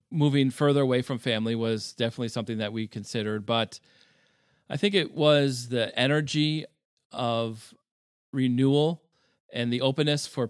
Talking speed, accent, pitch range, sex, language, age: 135 wpm, American, 110-140 Hz, male, English, 40-59